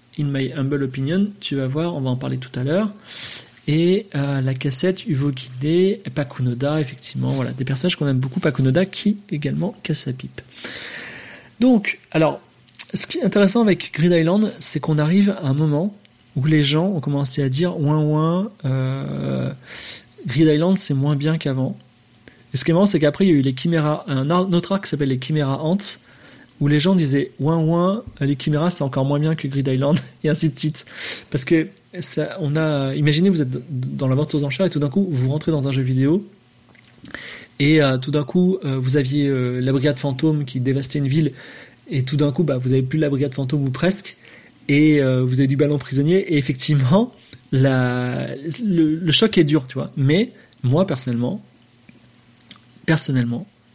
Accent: French